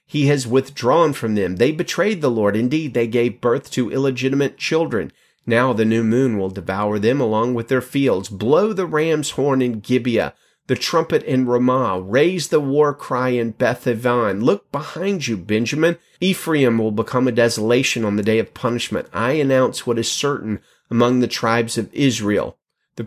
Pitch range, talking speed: 115-135 Hz, 175 wpm